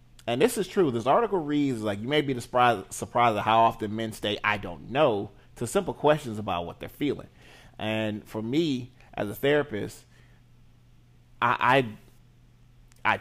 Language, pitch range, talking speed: English, 105-125 Hz, 170 wpm